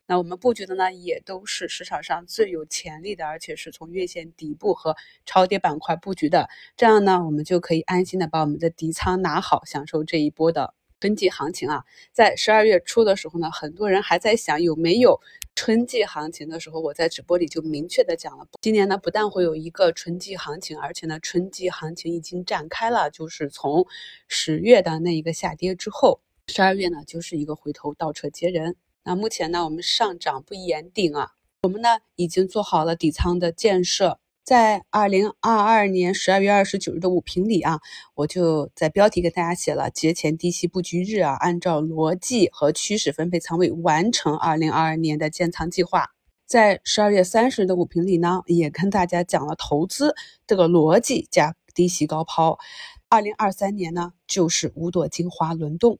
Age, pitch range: 20-39, 160-195 Hz